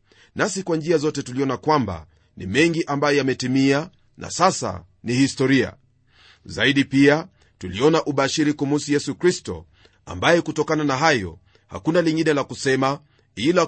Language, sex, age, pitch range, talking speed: Swahili, male, 40-59, 125-160 Hz, 130 wpm